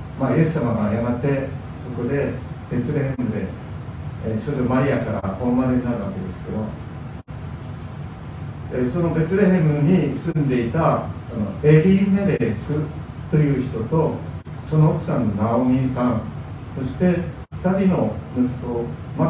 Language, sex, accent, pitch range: Japanese, male, native, 115-150 Hz